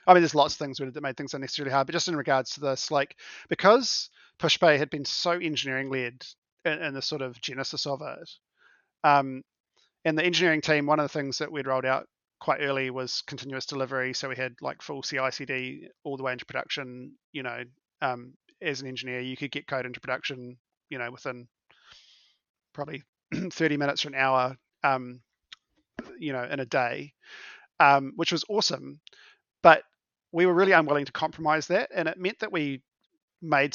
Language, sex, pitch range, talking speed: English, male, 130-150 Hz, 195 wpm